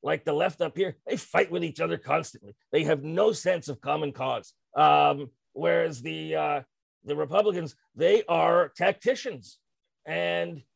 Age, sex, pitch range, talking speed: 40-59, male, 140-200 Hz, 155 wpm